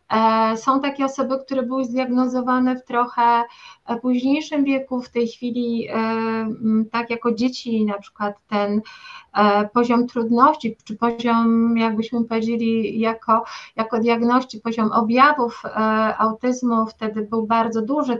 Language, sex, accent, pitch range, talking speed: Polish, female, native, 230-270 Hz, 115 wpm